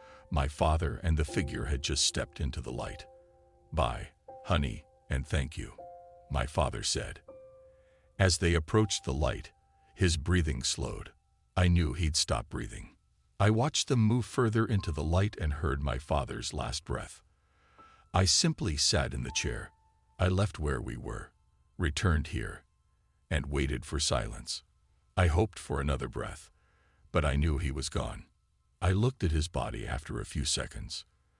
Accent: American